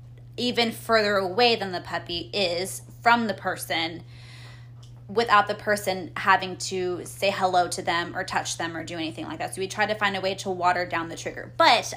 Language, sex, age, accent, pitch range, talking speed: English, female, 20-39, American, 165-210 Hz, 200 wpm